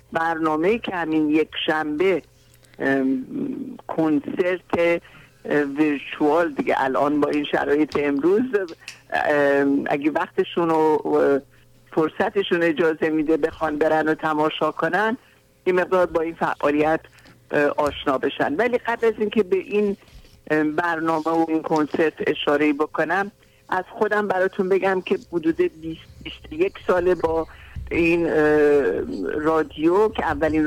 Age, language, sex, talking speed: 50-69, Persian, male, 110 wpm